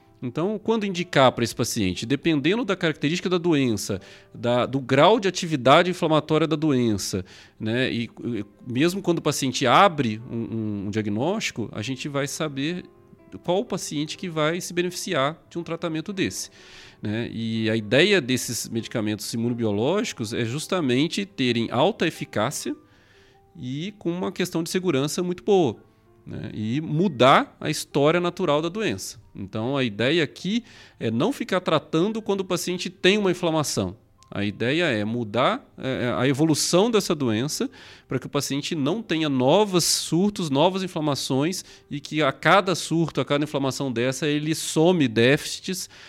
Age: 40-59